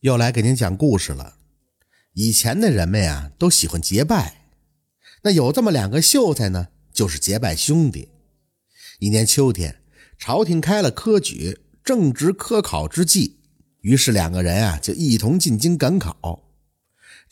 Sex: male